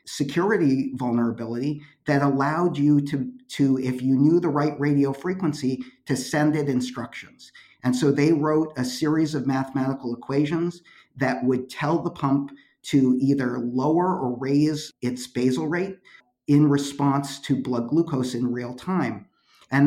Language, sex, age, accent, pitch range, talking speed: English, male, 50-69, American, 125-150 Hz, 150 wpm